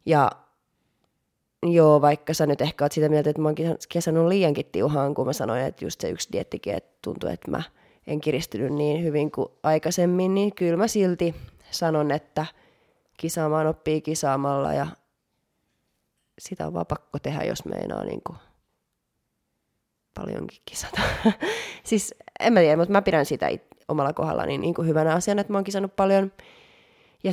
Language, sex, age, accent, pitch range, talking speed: Finnish, female, 20-39, native, 150-175 Hz, 165 wpm